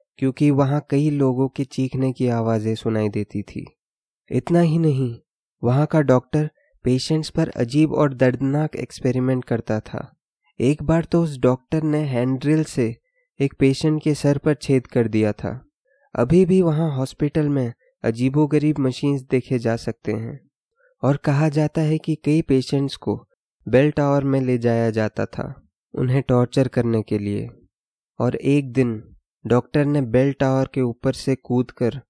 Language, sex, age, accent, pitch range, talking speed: Hindi, male, 20-39, native, 115-145 Hz, 155 wpm